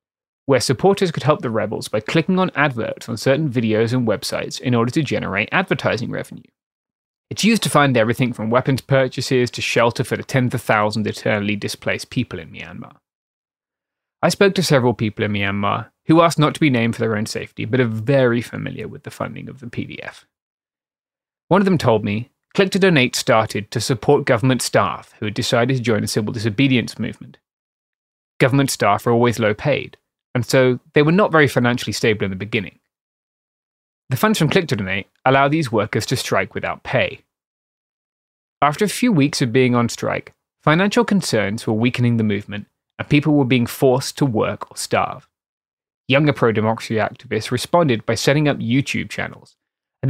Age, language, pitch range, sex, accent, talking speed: 20-39, English, 115-145 Hz, male, British, 180 wpm